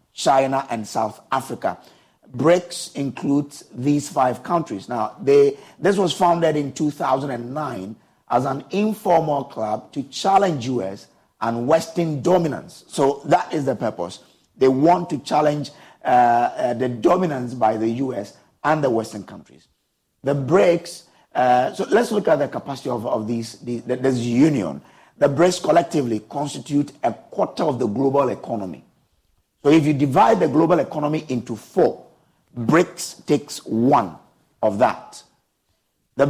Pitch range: 125-160 Hz